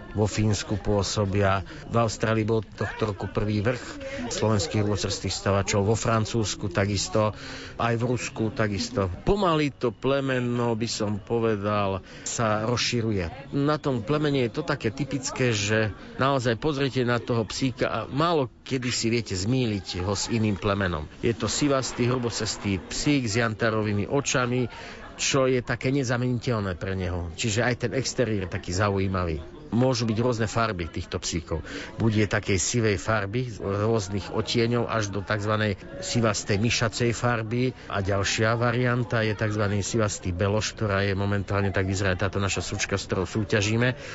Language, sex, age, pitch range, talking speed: Slovak, male, 50-69, 100-120 Hz, 150 wpm